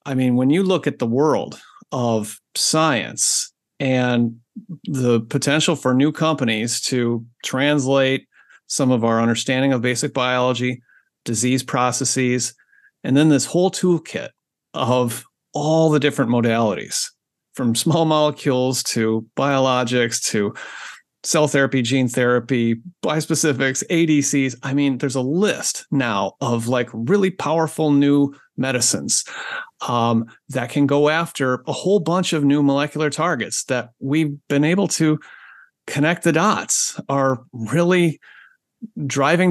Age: 40-59